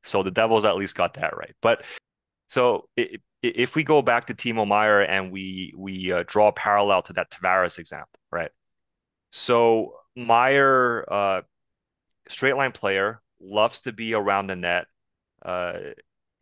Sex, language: male, English